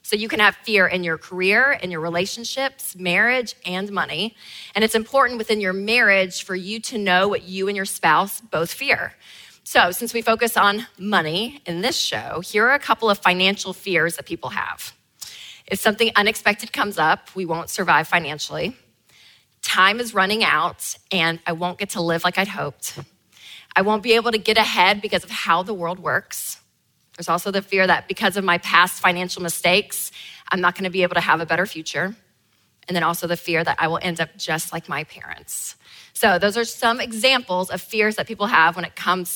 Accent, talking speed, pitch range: American, 205 wpm, 175-215 Hz